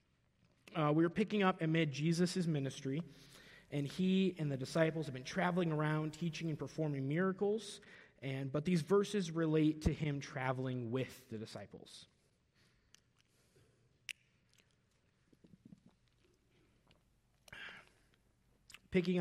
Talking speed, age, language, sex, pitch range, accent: 105 wpm, 30-49, Danish, male, 135-170 Hz, American